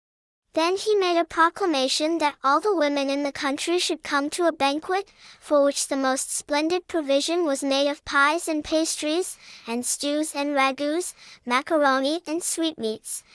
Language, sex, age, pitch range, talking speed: English, male, 10-29, 275-330 Hz, 160 wpm